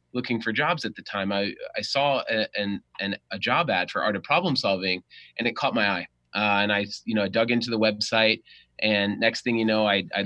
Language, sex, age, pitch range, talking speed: English, male, 20-39, 105-130 Hz, 235 wpm